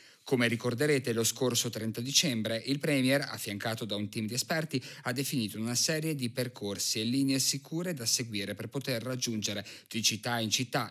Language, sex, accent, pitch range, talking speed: Italian, male, native, 110-135 Hz, 175 wpm